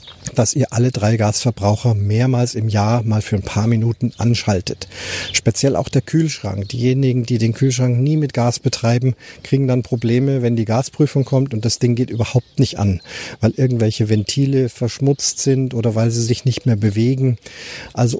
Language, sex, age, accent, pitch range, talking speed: German, male, 40-59, German, 105-125 Hz, 175 wpm